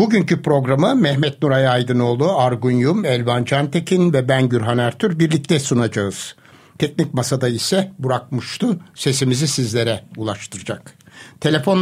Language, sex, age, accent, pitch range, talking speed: Turkish, male, 60-79, native, 125-155 Hz, 110 wpm